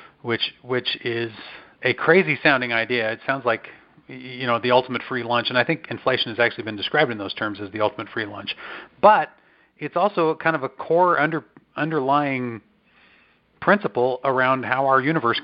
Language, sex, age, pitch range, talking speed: English, male, 40-59, 125-145 Hz, 175 wpm